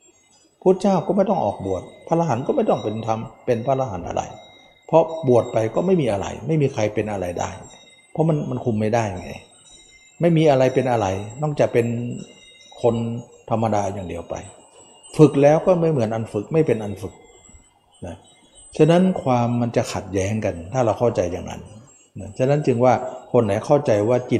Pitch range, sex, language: 100-130 Hz, male, Thai